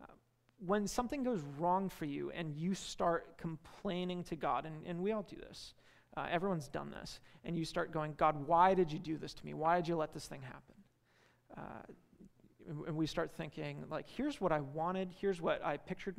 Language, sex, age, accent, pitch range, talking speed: English, male, 30-49, American, 155-180 Hz, 205 wpm